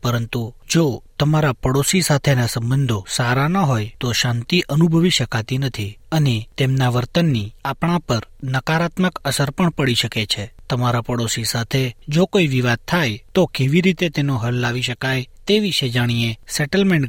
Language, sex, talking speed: Gujarati, male, 150 wpm